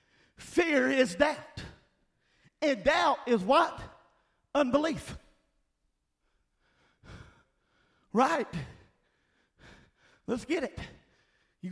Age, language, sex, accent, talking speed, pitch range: 40-59, English, male, American, 65 wpm, 230-295 Hz